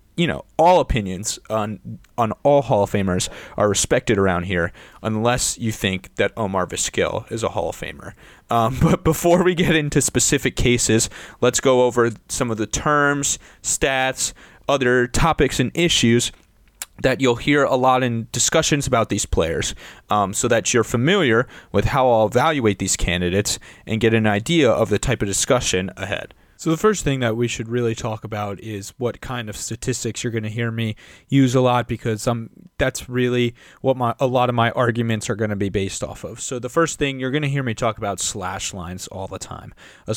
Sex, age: male, 30-49